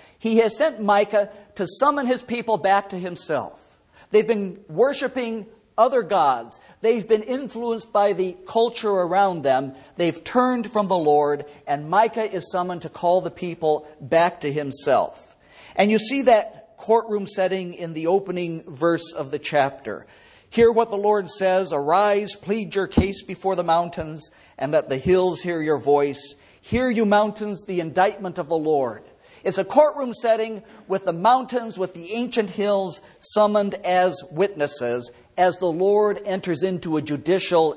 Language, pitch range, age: English, 150-205 Hz, 50-69